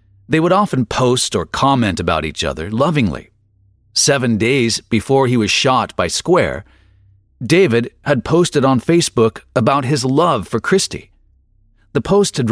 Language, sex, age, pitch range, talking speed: English, male, 40-59, 100-145 Hz, 150 wpm